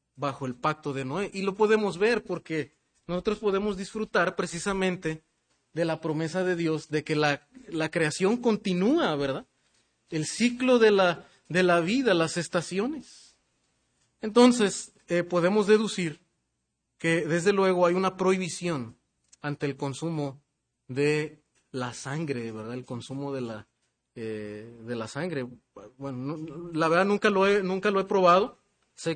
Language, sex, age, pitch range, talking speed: Spanish, male, 30-49, 150-190 Hz, 150 wpm